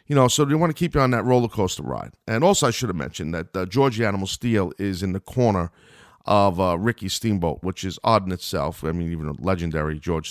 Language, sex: English, male